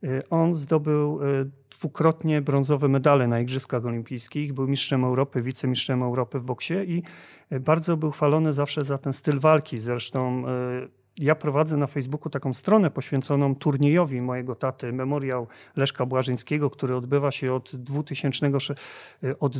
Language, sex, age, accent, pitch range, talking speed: Polish, male, 40-59, native, 135-160 Hz, 130 wpm